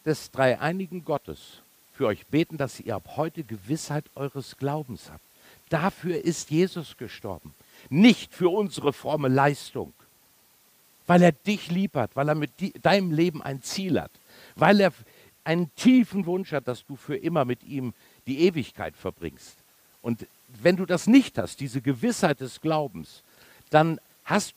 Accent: German